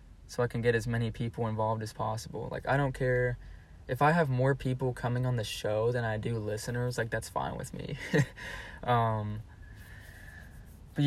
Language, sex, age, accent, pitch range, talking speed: English, male, 20-39, American, 105-120 Hz, 185 wpm